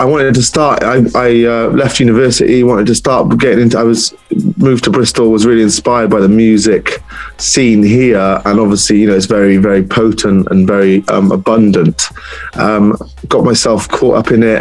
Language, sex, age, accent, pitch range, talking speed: English, male, 20-39, British, 105-115 Hz, 190 wpm